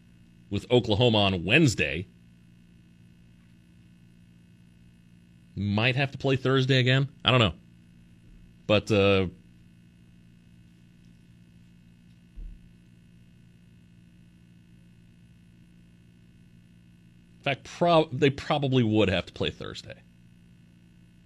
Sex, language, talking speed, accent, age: male, English, 70 wpm, American, 40-59